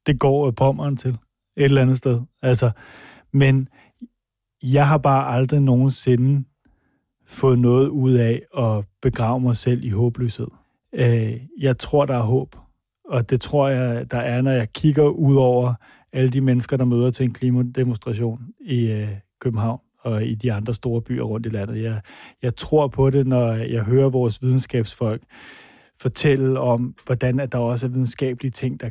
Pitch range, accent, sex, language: 120-140 Hz, native, male, Danish